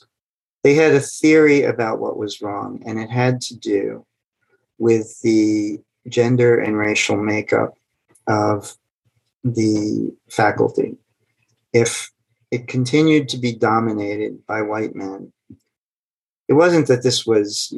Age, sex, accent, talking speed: 40-59, male, American, 120 wpm